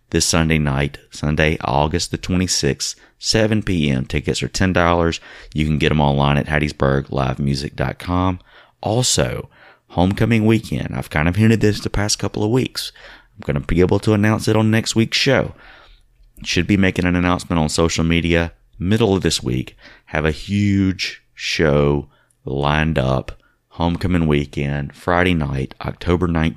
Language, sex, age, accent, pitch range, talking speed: English, male, 30-49, American, 75-95 Hz, 150 wpm